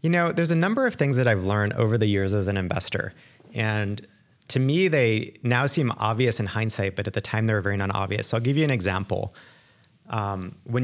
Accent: American